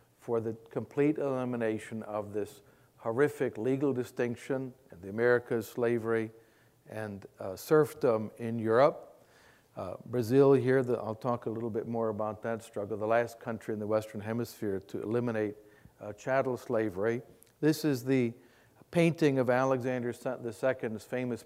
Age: 50-69